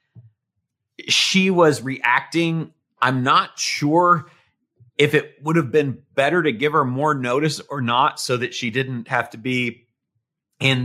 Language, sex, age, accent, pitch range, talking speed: English, male, 40-59, American, 105-125 Hz, 150 wpm